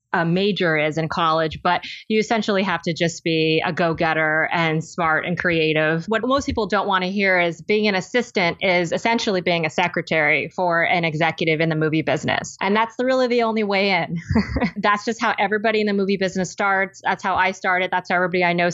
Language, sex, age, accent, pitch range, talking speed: English, female, 20-39, American, 170-195 Hz, 215 wpm